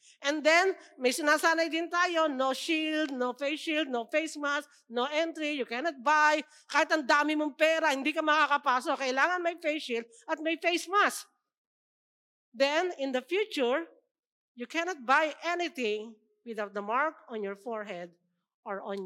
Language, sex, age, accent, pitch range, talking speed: English, female, 50-69, Filipino, 250-340 Hz, 155 wpm